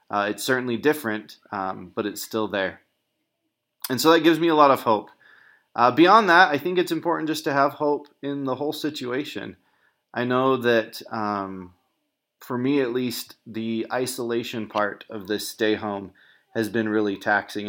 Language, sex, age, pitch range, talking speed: English, male, 30-49, 105-120 Hz, 175 wpm